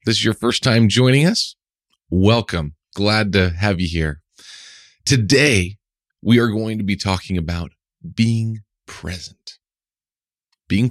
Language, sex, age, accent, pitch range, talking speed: English, male, 40-59, American, 90-120 Hz, 130 wpm